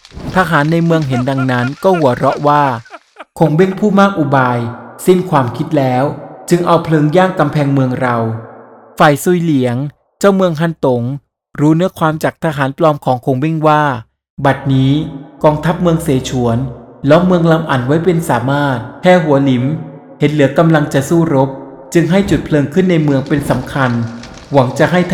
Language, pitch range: Thai, 135-170 Hz